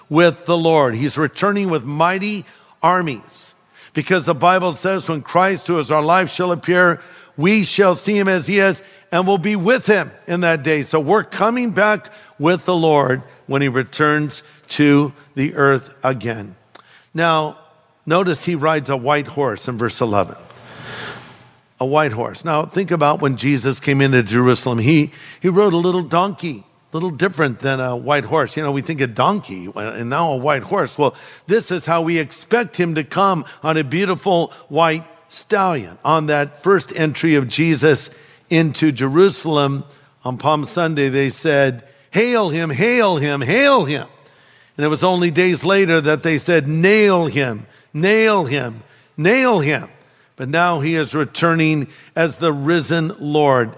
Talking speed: 170 wpm